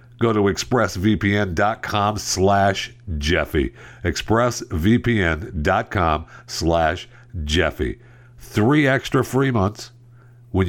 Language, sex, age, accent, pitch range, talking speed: English, male, 60-79, American, 80-120 Hz, 75 wpm